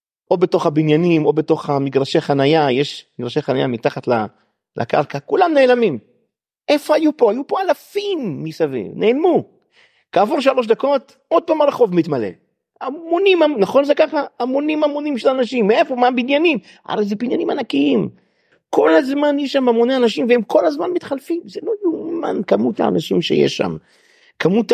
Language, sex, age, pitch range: Hebrew, male, 50-69, 165-280 Hz